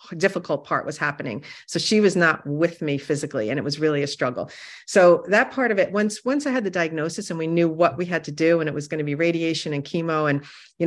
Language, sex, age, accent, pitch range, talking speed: English, female, 40-59, American, 150-185 Hz, 260 wpm